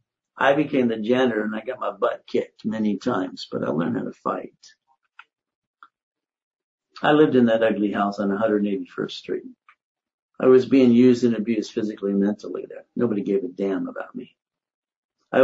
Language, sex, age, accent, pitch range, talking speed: English, male, 60-79, American, 120-185 Hz, 170 wpm